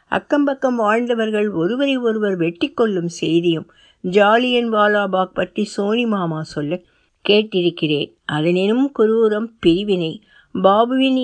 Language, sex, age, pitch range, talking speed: Tamil, female, 60-79, 170-235 Hz, 85 wpm